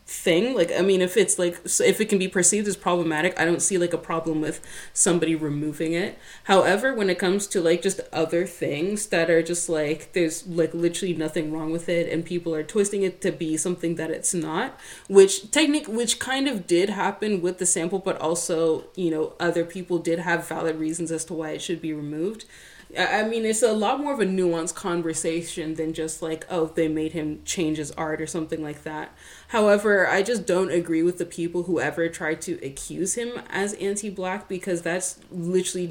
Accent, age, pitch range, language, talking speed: American, 20-39, 160-185 Hz, English, 210 wpm